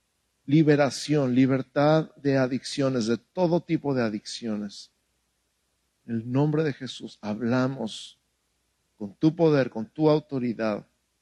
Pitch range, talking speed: 95-130 Hz, 110 wpm